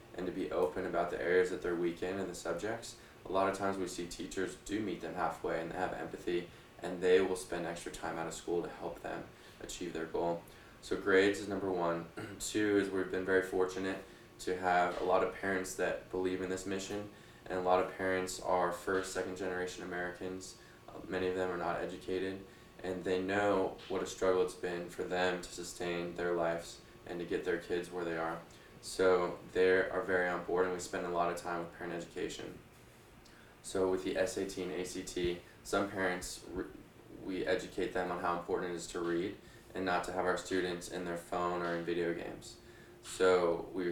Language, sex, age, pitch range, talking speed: English, male, 20-39, 85-95 Hz, 210 wpm